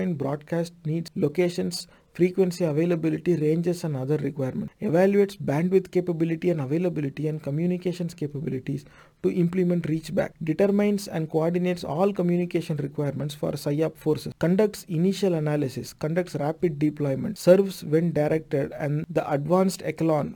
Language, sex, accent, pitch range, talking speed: English, male, Indian, 150-185 Hz, 125 wpm